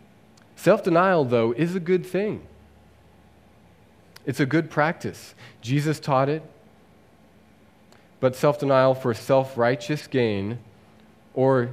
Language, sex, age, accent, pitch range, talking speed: English, male, 30-49, American, 105-130 Hz, 95 wpm